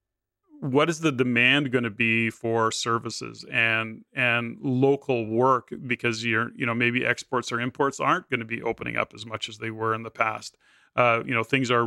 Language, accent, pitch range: English, American, 115-135 Hz